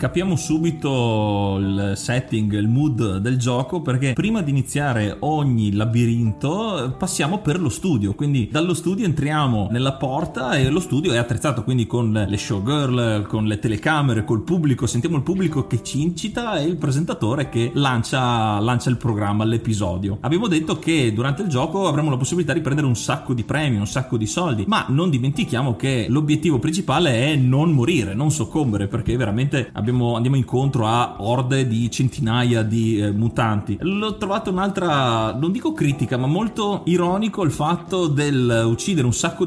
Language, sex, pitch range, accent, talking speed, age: Italian, male, 115-155 Hz, native, 165 wpm, 30-49